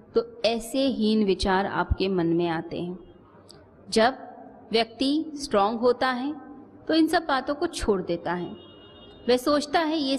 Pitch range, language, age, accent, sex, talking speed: 195-275 Hz, Hindi, 30-49, native, female, 155 wpm